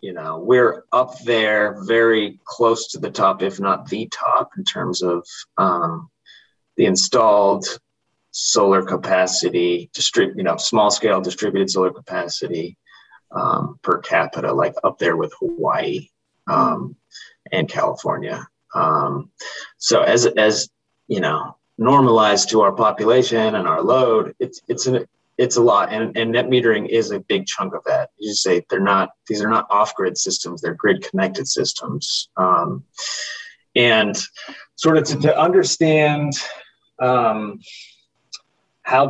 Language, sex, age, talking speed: English, male, 30-49, 140 wpm